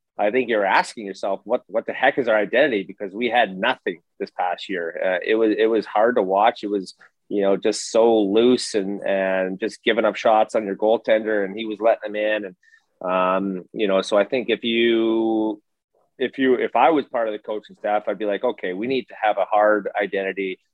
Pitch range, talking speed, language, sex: 100-110 Hz, 230 wpm, English, male